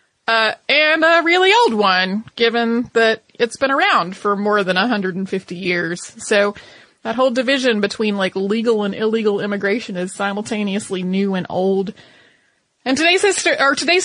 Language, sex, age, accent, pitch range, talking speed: English, female, 30-49, American, 205-265 Hz, 155 wpm